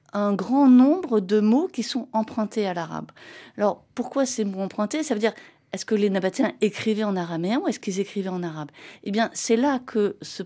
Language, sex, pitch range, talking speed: French, female, 190-245 Hz, 210 wpm